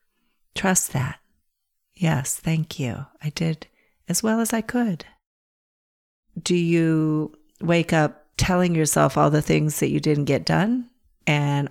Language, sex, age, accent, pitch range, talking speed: English, female, 50-69, American, 145-175 Hz, 140 wpm